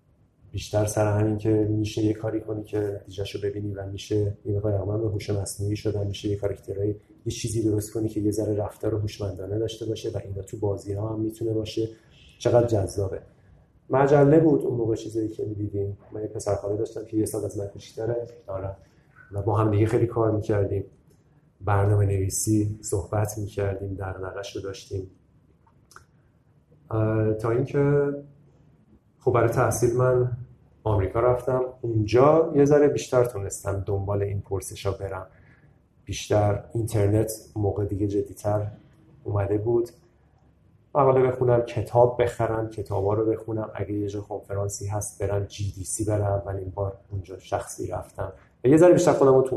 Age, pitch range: 30-49, 100-120 Hz